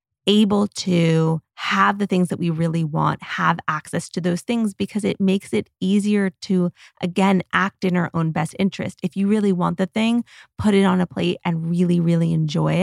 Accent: American